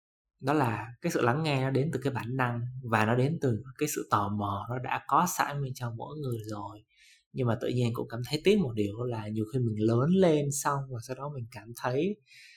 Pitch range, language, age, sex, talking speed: 110-135 Hz, Vietnamese, 20-39, male, 250 wpm